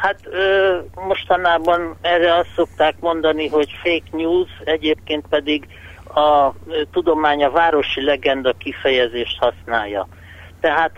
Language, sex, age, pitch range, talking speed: Hungarian, male, 60-79, 125-165 Hz, 105 wpm